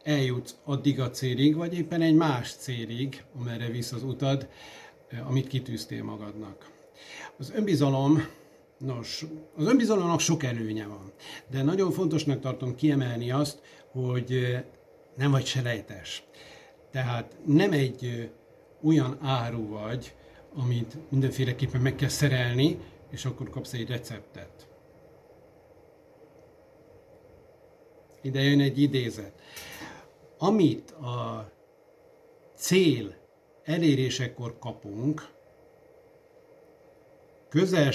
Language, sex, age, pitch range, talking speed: Hungarian, male, 60-79, 125-160 Hz, 95 wpm